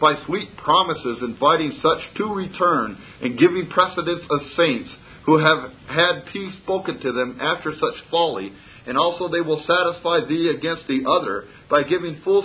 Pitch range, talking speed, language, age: 135-170 Hz, 165 wpm, English, 50-69